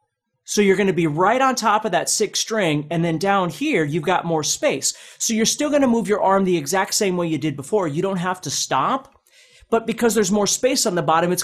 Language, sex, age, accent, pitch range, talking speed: English, male, 30-49, American, 140-195 Hz, 245 wpm